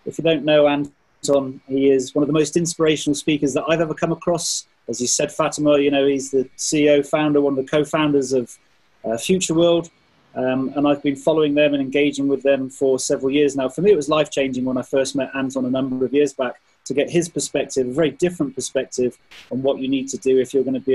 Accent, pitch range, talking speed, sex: British, 135-165 Hz, 240 wpm, male